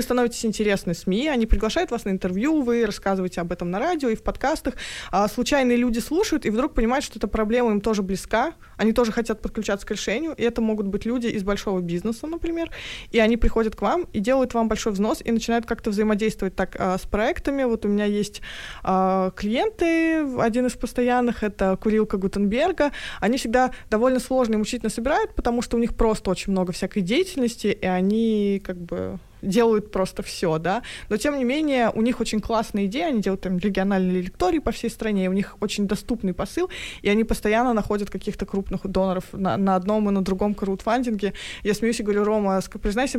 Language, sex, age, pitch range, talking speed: Russian, female, 20-39, 195-245 Hz, 195 wpm